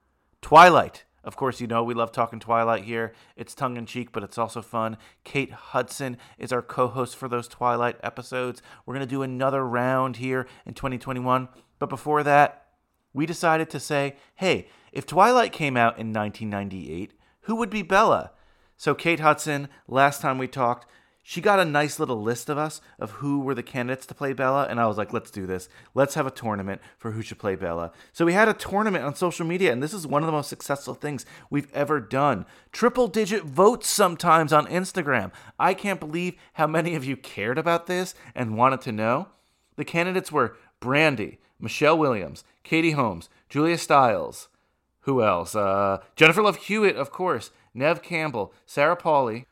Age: 30-49